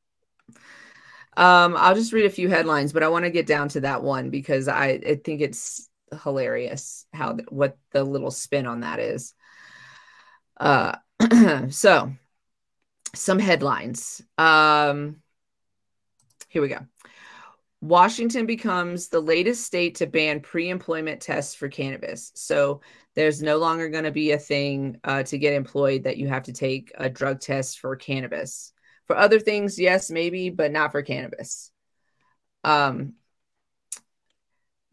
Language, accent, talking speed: English, American, 140 wpm